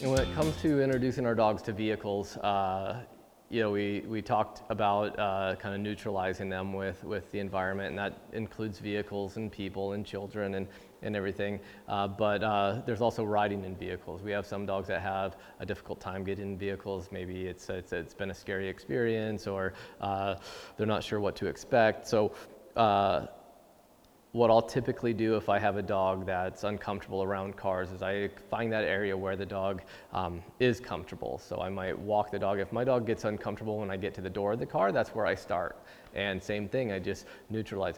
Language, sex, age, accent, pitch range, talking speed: English, male, 20-39, American, 95-115 Hz, 205 wpm